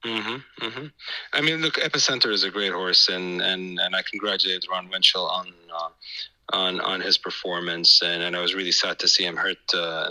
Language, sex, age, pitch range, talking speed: English, male, 30-49, 90-110 Hz, 210 wpm